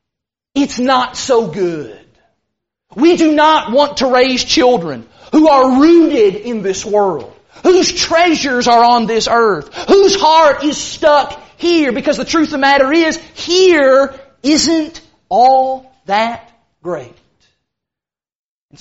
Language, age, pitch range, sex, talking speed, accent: English, 40-59, 230-345 Hz, male, 130 wpm, American